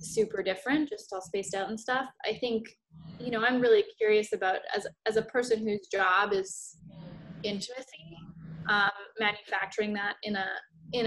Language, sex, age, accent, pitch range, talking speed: English, female, 10-29, American, 185-240 Hz, 165 wpm